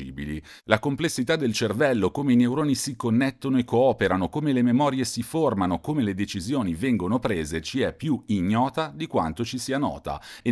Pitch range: 90-120 Hz